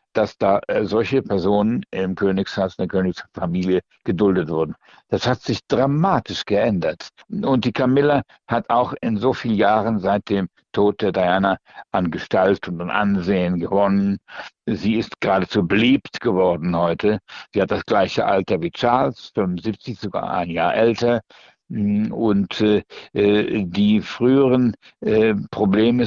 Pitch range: 100-145 Hz